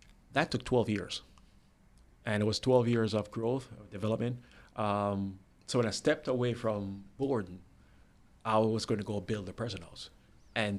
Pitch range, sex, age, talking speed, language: 100-115 Hz, male, 20-39, 170 wpm, English